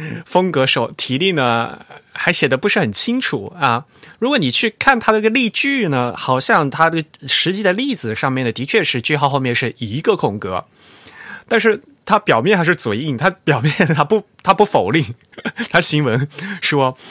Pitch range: 120-175 Hz